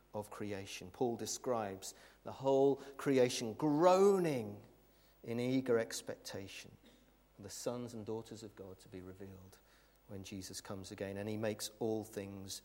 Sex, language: male, English